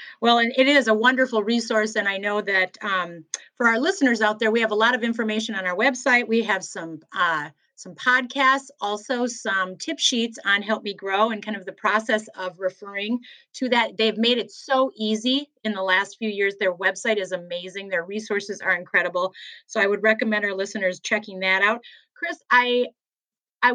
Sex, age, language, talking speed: female, 30-49, English, 200 wpm